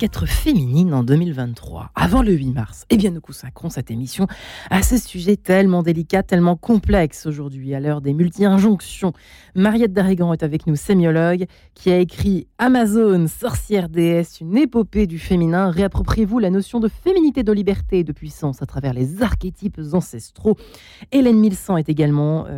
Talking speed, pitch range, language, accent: 160 wpm, 160-215 Hz, French, French